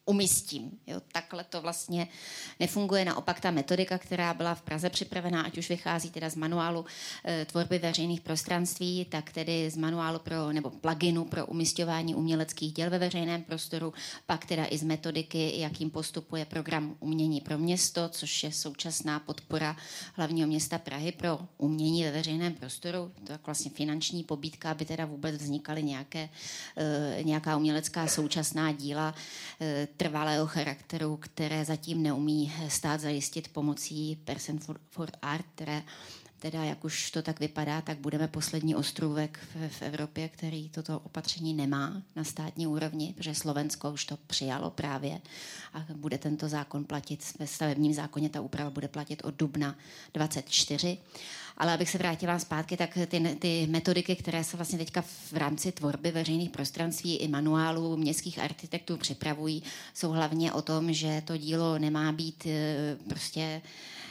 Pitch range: 150-165 Hz